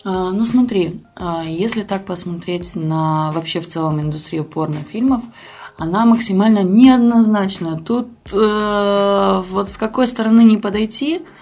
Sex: female